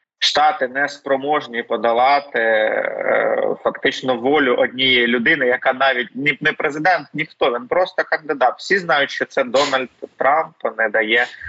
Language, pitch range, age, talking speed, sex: Ukrainian, 115-145 Hz, 20-39, 125 wpm, male